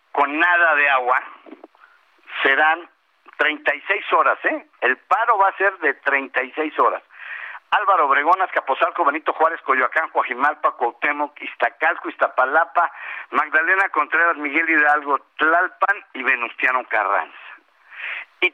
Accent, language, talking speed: Mexican, Spanish, 115 wpm